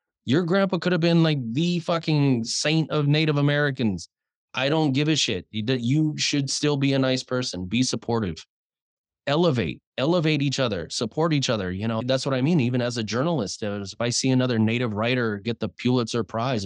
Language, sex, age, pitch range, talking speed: English, male, 20-39, 110-135 Hz, 190 wpm